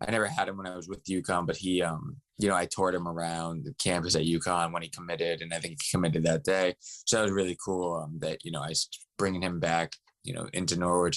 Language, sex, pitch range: English, male, 80-95 Hz